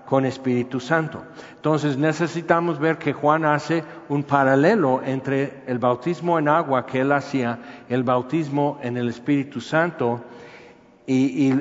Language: Spanish